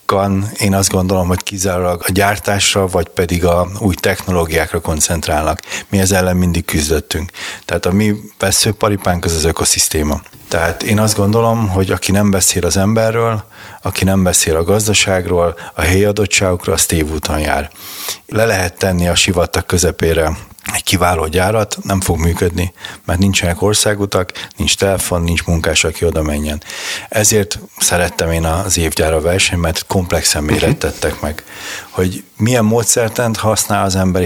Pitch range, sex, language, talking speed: 85-105 Hz, male, Hungarian, 150 wpm